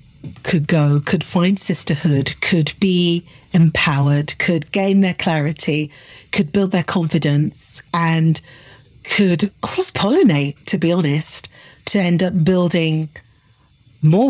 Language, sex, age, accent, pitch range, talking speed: English, female, 40-59, British, 155-190 Hz, 120 wpm